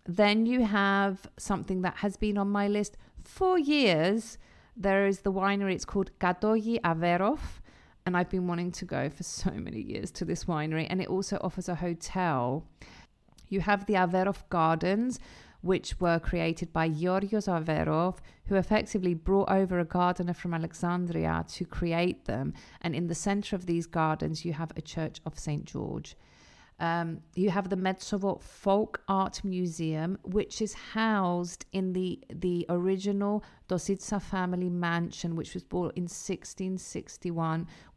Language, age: Greek, 40-59